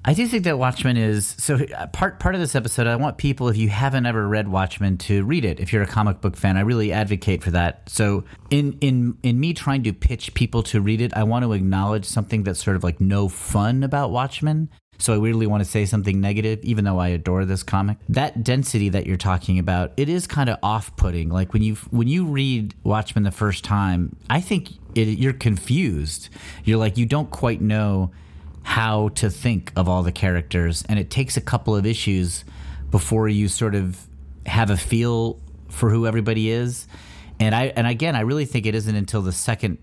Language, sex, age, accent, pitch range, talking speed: English, male, 30-49, American, 95-120 Hz, 215 wpm